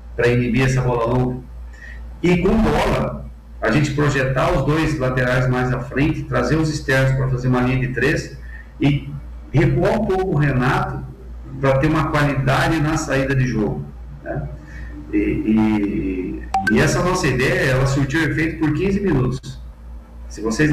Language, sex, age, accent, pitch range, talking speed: Portuguese, male, 50-69, Brazilian, 105-150 Hz, 160 wpm